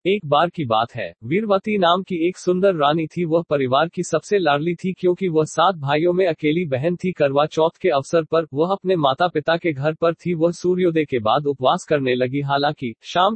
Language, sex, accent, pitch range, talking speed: Hindi, male, native, 145-180 Hz, 215 wpm